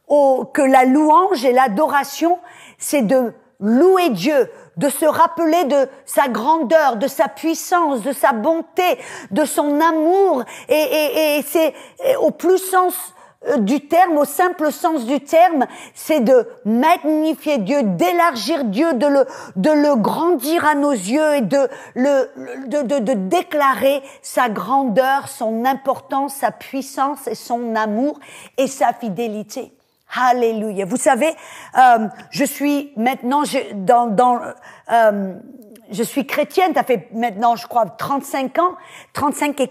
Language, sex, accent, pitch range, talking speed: English, female, French, 250-320 Hz, 145 wpm